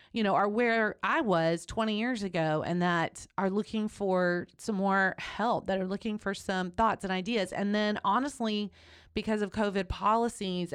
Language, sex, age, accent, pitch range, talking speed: English, female, 30-49, American, 175-215 Hz, 180 wpm